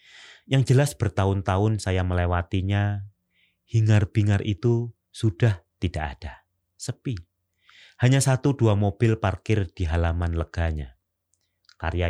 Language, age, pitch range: Indonesian, 30-49, 90-110 Hz